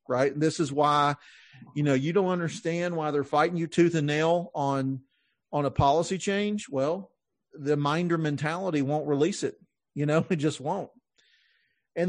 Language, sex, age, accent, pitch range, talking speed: English, male, 40-59, American, 145-180 Hz, 175 wpm